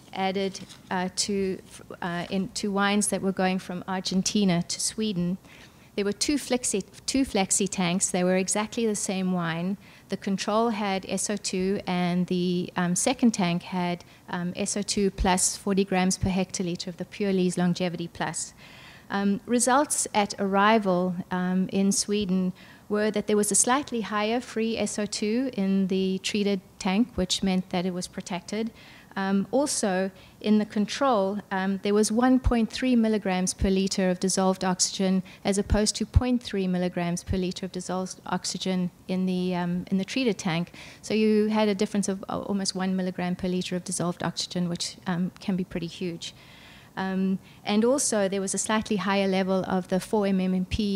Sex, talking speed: female, 160 wpm